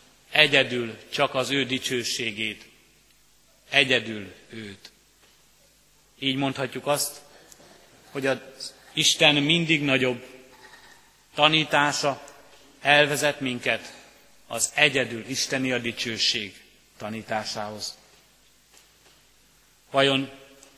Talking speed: 70 wpm